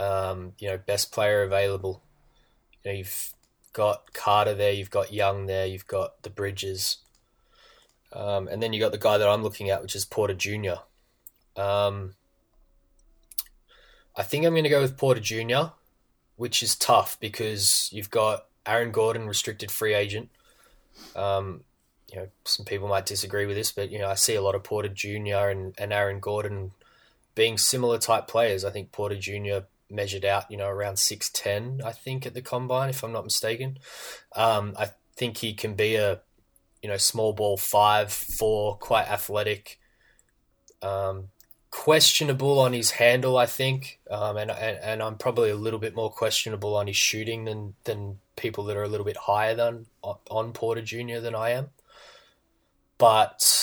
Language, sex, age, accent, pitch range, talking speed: English, male, 20-39, Australian, 100-115 Hz, 170 wpm